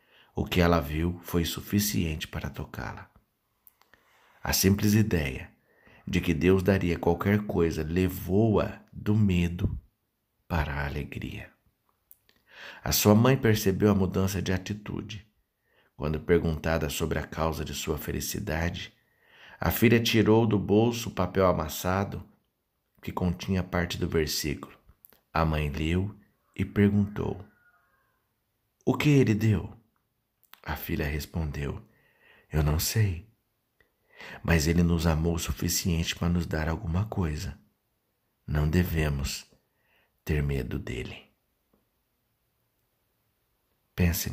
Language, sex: Portuguese, male